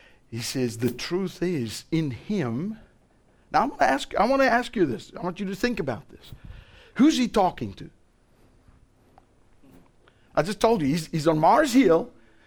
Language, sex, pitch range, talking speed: English, male, 140-230 Hz, 180 wpm